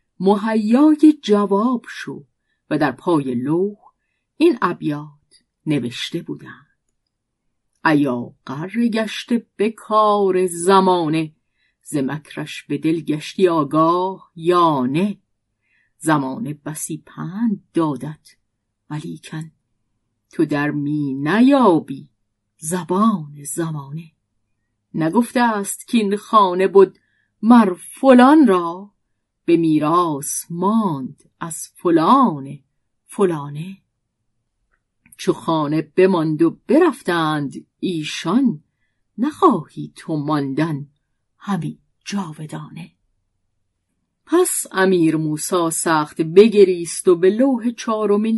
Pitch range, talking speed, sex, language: 145-205 Hz, 85 wpm, female, Persian